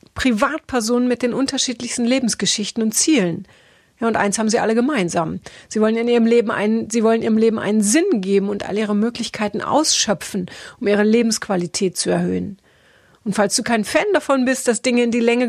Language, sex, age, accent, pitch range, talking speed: German, female, 30-49, German, 200-240 Hz, 190 wpm